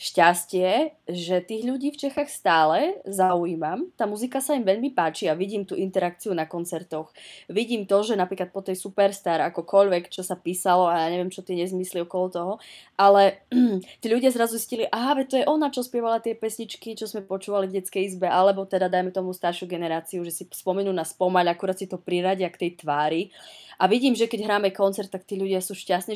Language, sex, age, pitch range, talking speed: Czech, female, 20-39, 175-225 Hz, 205 wpm